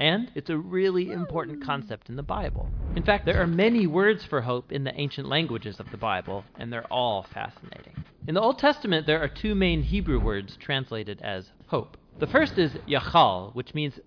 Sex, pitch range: male, 120-165 Hz